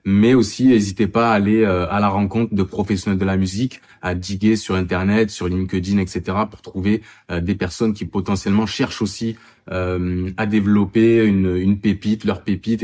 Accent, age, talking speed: French, 20-39, 170 wpm